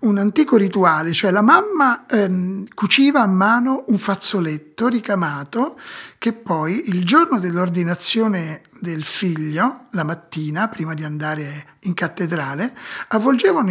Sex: male